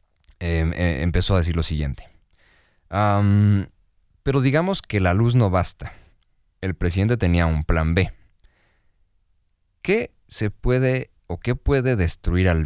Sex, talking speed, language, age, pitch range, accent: male, 135 wpm, Spanish, 30-49, 85-120 Hz, Mexican